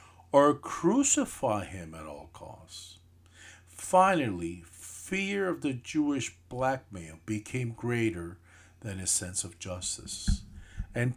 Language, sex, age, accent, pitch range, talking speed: English, male, 50-69, American, 85-105 Hz, 105 wpm